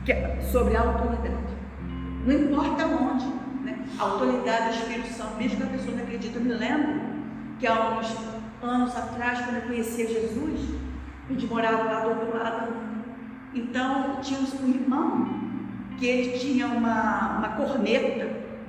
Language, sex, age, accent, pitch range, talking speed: Portuguese, female, 40-59, Brazilian, 220-245 Hz, 155 wpm